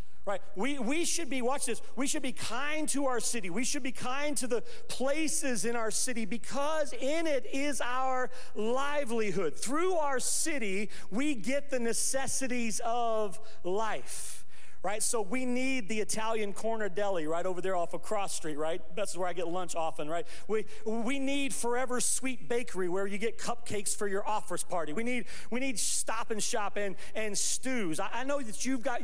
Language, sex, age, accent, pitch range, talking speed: English, male, 40-59, American, 205-265 Hz, 190 wpm